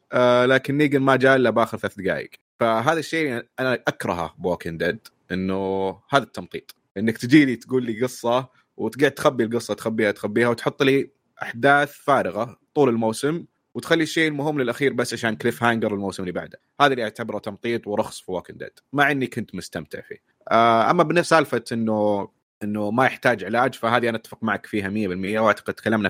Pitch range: 105-130 Hz